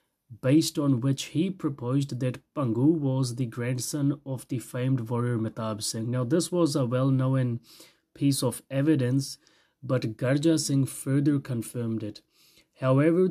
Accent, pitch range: Indian, 120-150 Hz